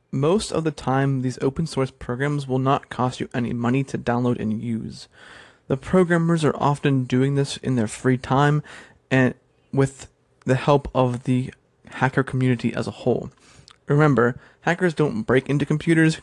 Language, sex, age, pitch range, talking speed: English, male, 20-39, 125-150 Hz, 165 wpm